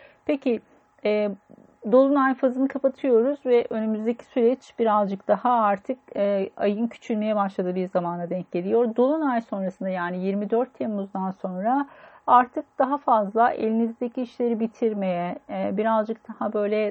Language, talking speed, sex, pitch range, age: Turkish, 125 wpm, female, 195-240 Hz, 40-59